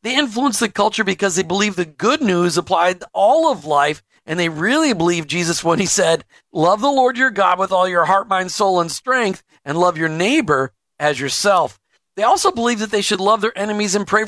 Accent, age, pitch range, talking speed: American, 50-69, 170-220 Hz, 220 wpm